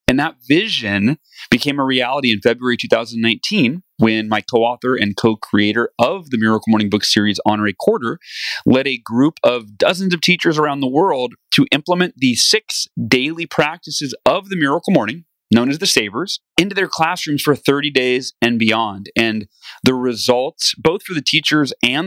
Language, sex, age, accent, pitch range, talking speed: English, male, 30-49, American, 115-155 Hz, 170 wpm